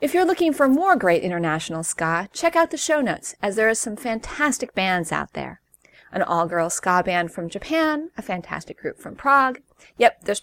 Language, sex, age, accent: English, female, 30-49, American